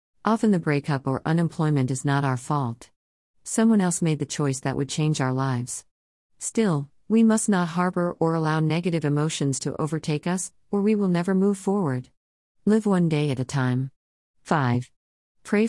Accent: American